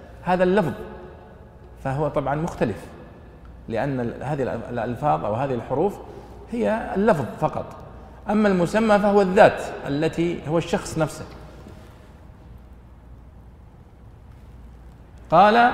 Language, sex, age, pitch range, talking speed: Arabic, male, 40-59, 115-160 Hz, 90 wpm